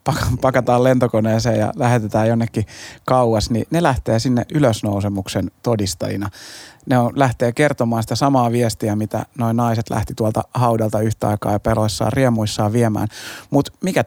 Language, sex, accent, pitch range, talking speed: Finnish, male, native, 110-125 Hz, 140 wpm